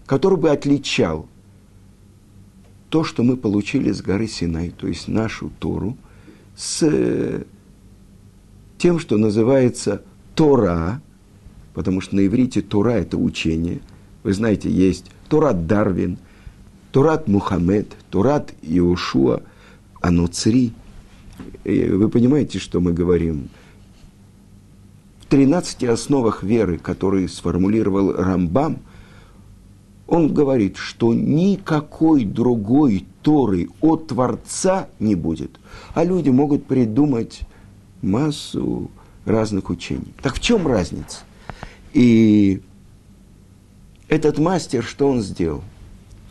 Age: 50-69